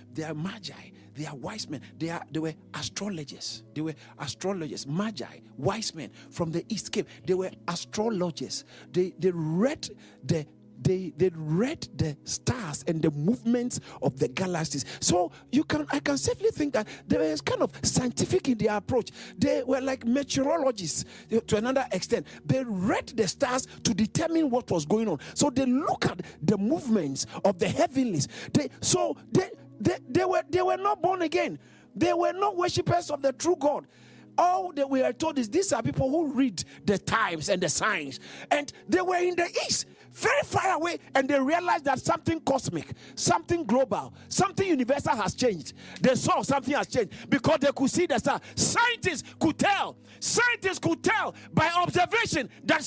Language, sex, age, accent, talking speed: English, male, 50-69, Nigerian, 180 wpm